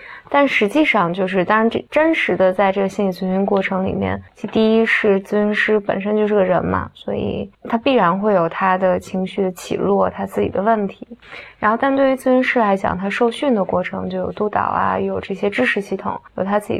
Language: Chinese